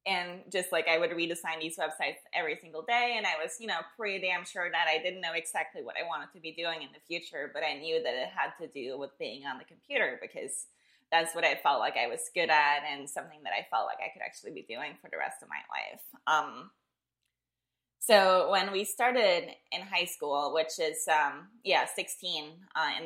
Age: 20-39